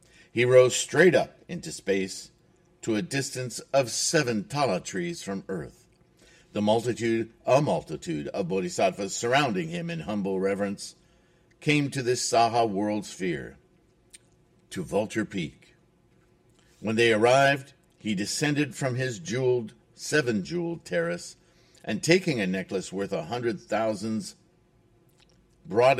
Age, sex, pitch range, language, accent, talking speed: 50-69, male, 100-170 Hz, English, American, 125 wpm